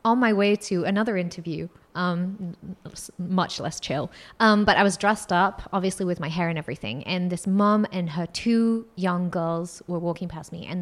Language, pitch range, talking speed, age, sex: English, 180-255 Hz, 195 wpm, 20-39, female